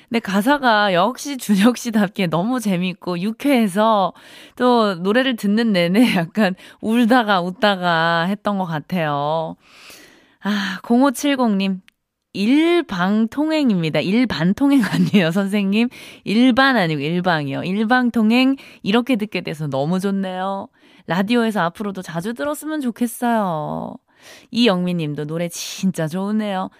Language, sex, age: Korean, female, 20-39